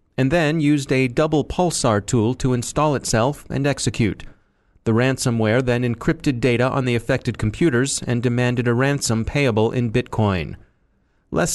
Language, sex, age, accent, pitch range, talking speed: English, male, 30-49, American, 115-145 Hz, 150 wpm